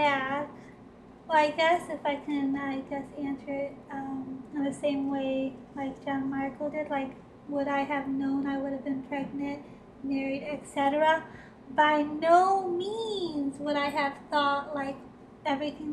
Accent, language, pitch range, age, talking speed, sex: American, English, 275-305 Hz, 20-39, 150 wpm, female